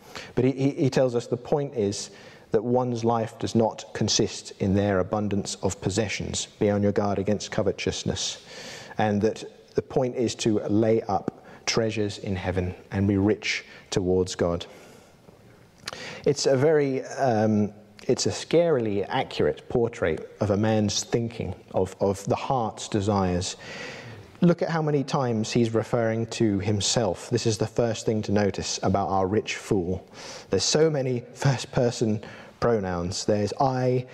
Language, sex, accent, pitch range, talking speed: English, male, British, 100-125 Hz, 150 wpm